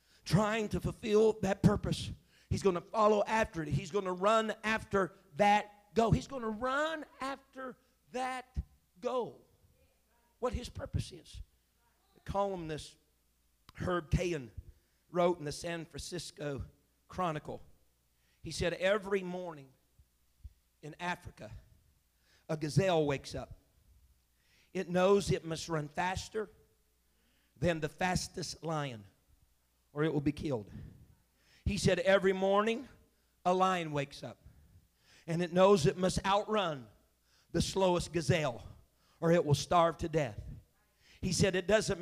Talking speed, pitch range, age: 130 wpm, 120-195 Hz, 50-69